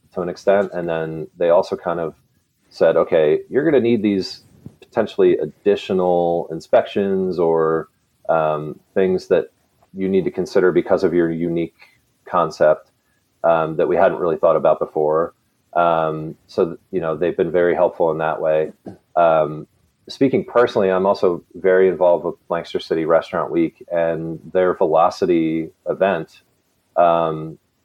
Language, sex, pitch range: English, male, 80-95 Hz